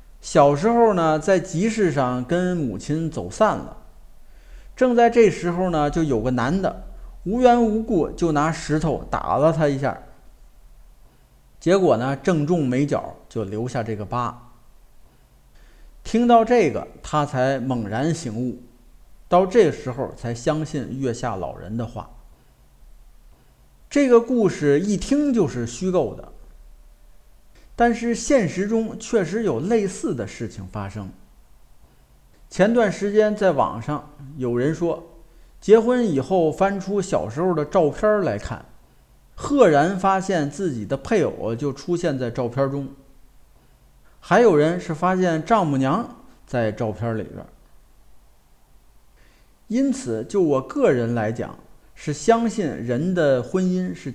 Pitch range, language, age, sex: 125-195 Hz, Chinese, 50-69, male